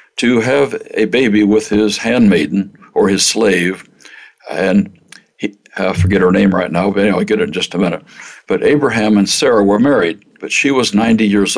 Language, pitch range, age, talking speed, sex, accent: English, 100-140 Hz, 60-79, 200 wpm, male, American